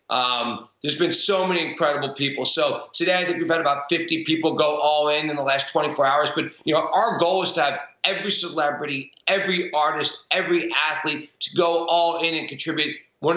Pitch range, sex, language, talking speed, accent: 150-175 Hz, male, English, 200 wpm, American